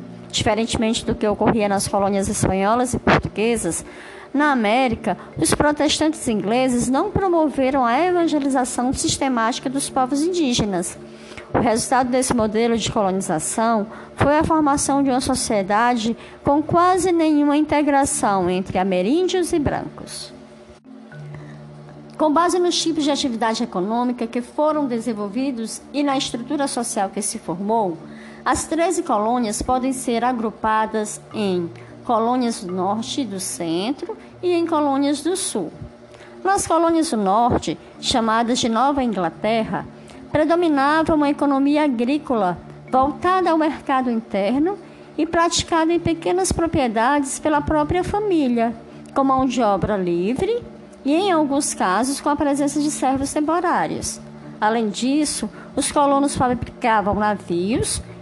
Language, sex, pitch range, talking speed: Portuguese, male, 215-295 Hz, 125 wpm